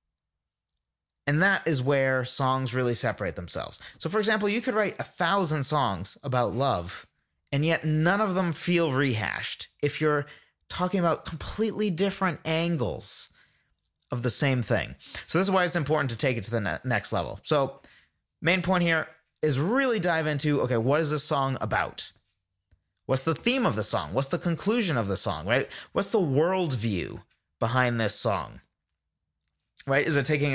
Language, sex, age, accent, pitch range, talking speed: English, male, 30-49, American, 115-160 Hz, 170 wpm